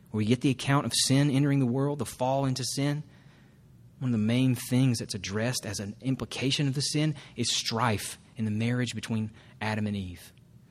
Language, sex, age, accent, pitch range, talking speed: English, male, 30-49, American, 110-135 Hz, 195 wpm